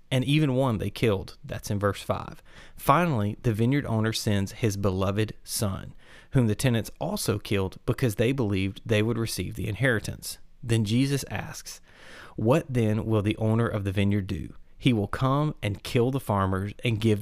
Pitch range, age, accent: 100-130 Hz, 30-49, American